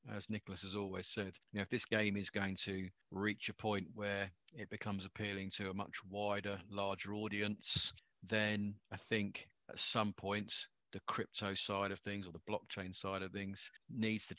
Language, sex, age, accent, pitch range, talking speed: English, male, 40-59, British, 100-115 Hz, 190 wpm